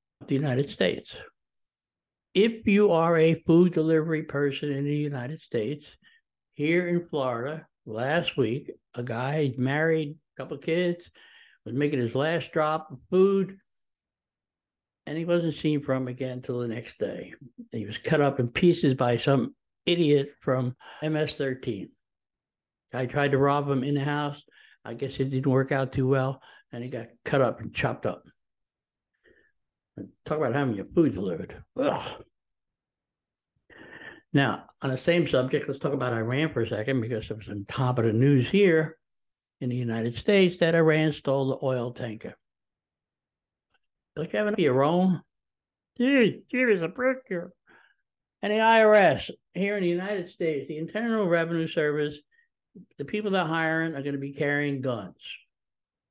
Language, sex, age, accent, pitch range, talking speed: English, male, 60-79, American, 130-170 Hz, 155 wpm